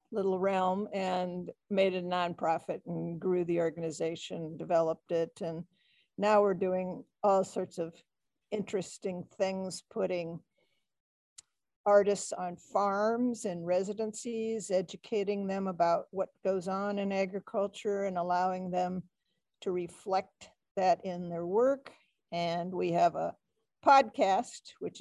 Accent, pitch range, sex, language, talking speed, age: American, 175-205 Hz, female, English, 120 wpm, 50-69